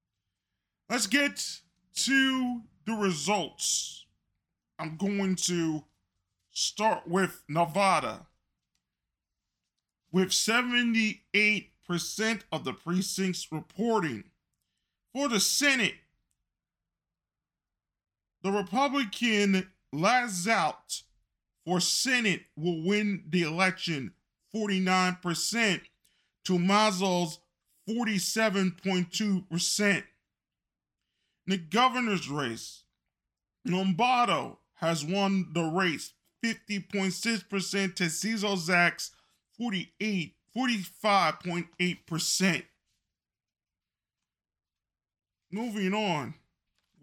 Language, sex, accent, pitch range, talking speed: English, male, American, 170-220 Hz, 60 wpm